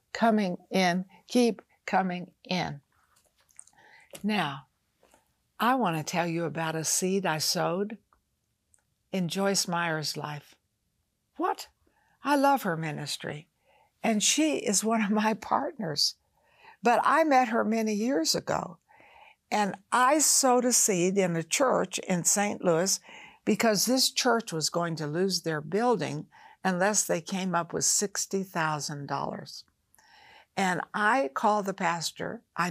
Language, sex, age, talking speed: English, female, 60-79, 130 wpm